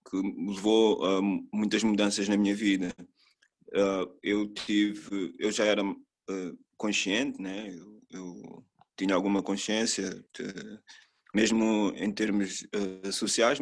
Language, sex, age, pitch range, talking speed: Portuguese, male, 20-39, 100-120 Hz, 130 wpm